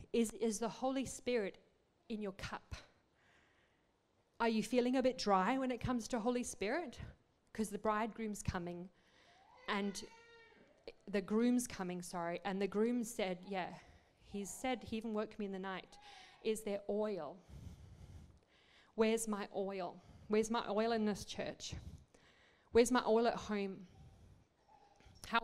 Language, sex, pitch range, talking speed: English, female, 195-235 Hz, 145 wpm